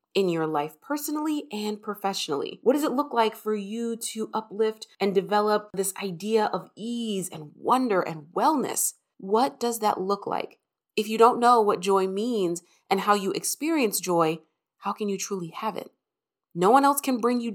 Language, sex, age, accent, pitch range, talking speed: English, female, 30-49, American, 180-245 Hz, 185 wpm